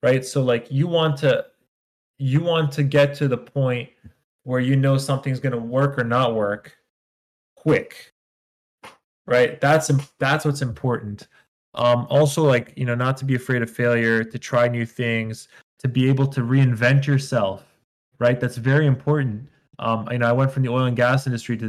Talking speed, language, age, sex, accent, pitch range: 180 wpm, English, 20-39, male, American, 120-150 Hz